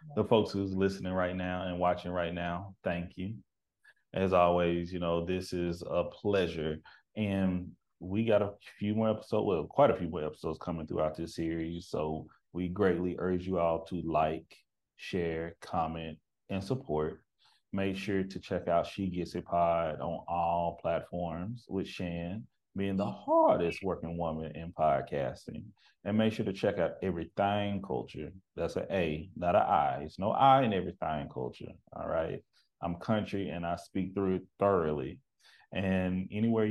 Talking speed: 165 wpm